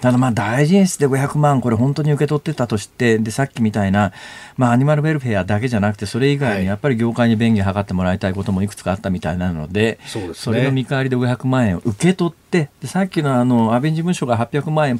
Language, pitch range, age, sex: Japanese, 105-150 Hz, 40-59, male